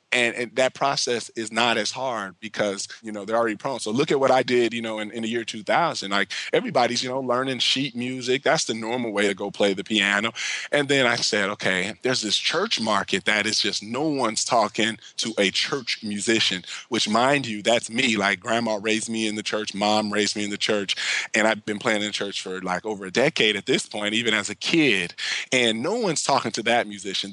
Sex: male